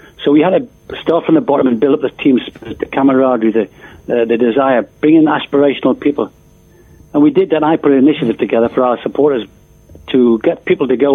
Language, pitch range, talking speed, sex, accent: English, 135-175 Hz, 215 wpm, male, British